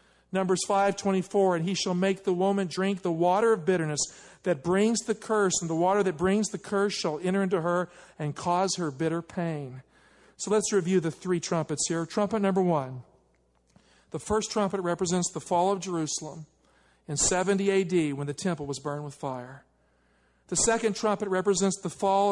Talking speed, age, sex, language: 180 wpm, 50-69, male, English